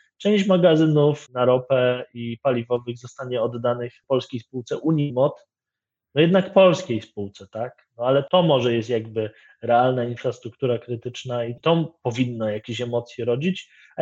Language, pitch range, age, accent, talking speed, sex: Polish, 125-165 Hz, 20-39, native, 135 wpm, male